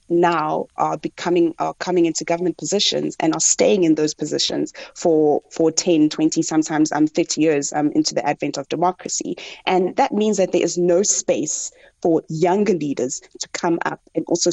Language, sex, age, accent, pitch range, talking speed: English, female, 20-39, South African, 165-185 Hz, 180 wpm